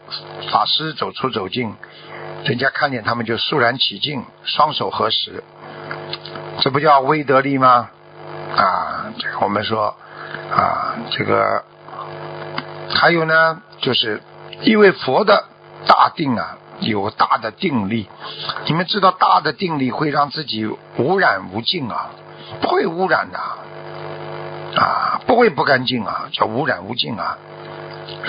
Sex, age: male, 60-79